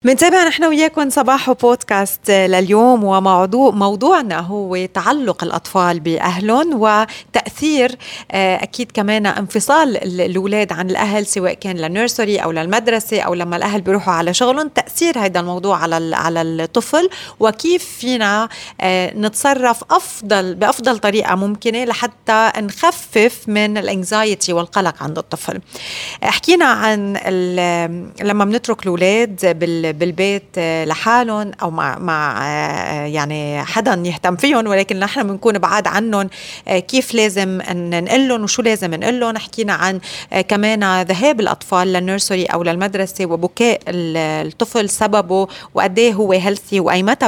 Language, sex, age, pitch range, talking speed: Arabic, female, 30-49, 185-235 Hz, 115 wpm